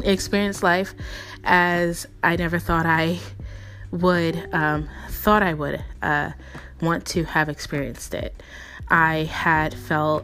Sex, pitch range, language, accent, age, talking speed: female, 145-175 Hz, English, American, 20-39, 125 wpm